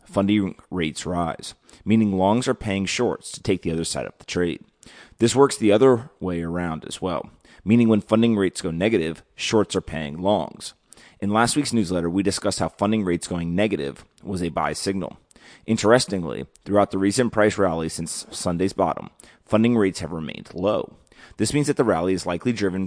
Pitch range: 85-105 Hz